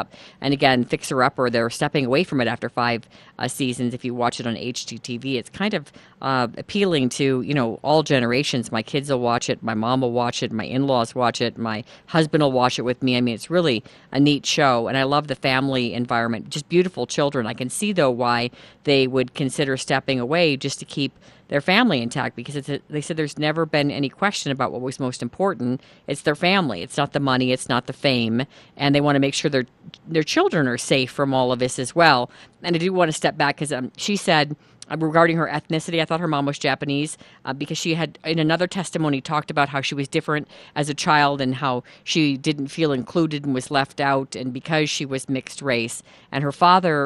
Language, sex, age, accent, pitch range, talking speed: English, female, 40-59, American, 125-155 Hz, 230 wpm